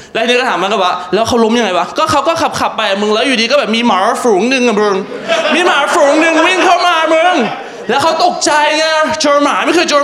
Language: Thai